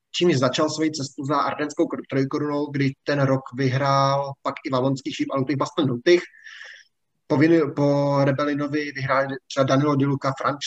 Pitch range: 130-150 Hz